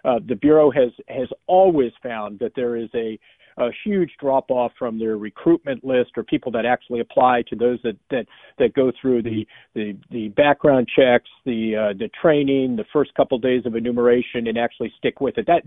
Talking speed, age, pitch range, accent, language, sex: 200 wpm, 50-69, 120-150 Hz, American, English, male